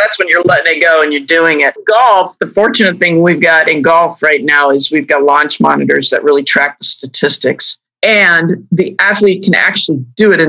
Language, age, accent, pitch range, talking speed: English, 50-69, American, 165-210 Hz, 215 wpm